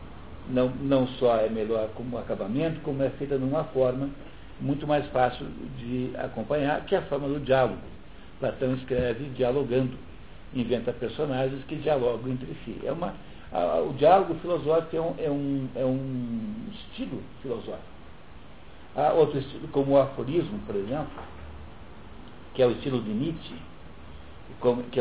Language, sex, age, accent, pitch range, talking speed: Portuguese, male, 60-79, Brazilian, 115-150 Hz, 135 wpm